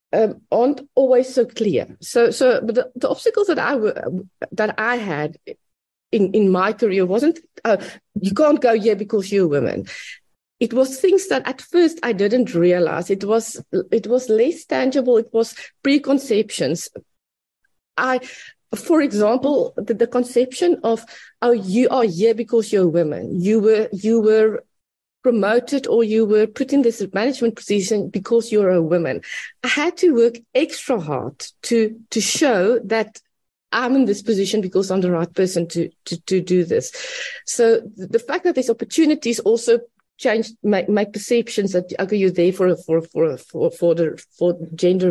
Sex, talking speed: female, 165 wpm